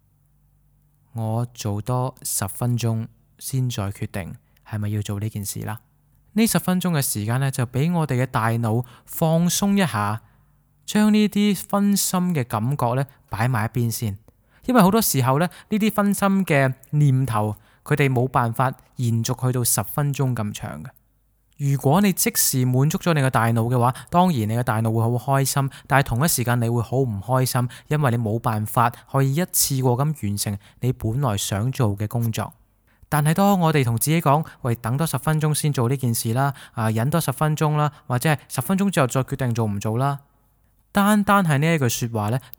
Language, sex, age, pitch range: Chinese, male, 20-39, 115-150 Hz